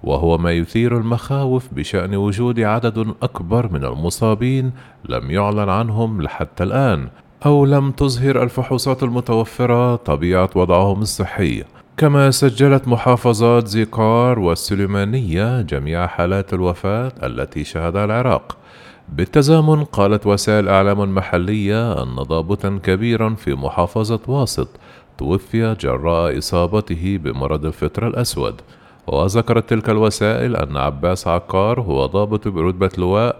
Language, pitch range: Arabic, 90-120 Hz